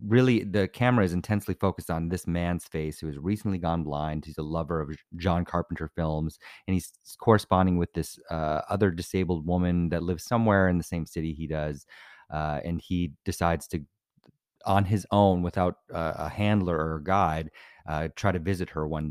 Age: 30-49